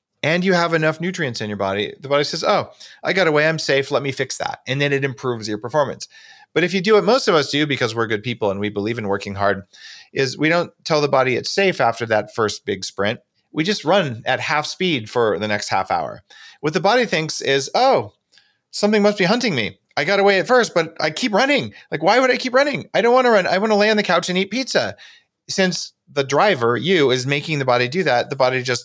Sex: male